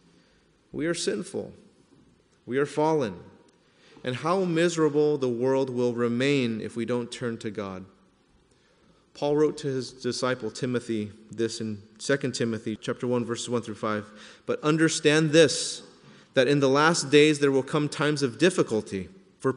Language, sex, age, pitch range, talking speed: English, male, 30-49, 125-155 Hz, 155 wpm